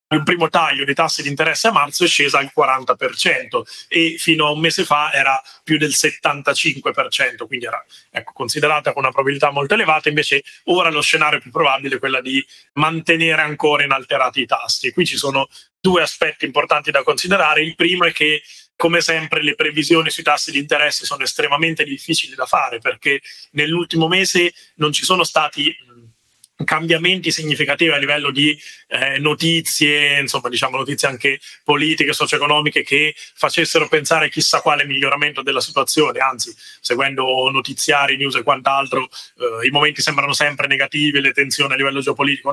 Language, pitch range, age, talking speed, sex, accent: Italian, 140-165 Hz, 30-49, 165 wpm, male, native